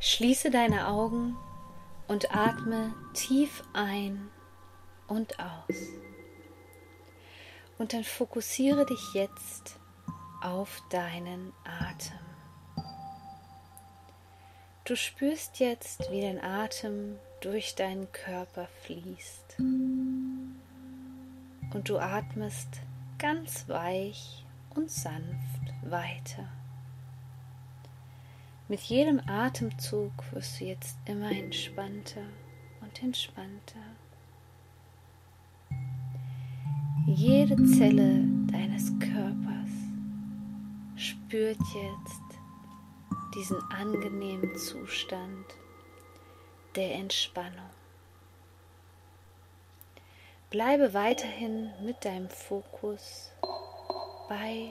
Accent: German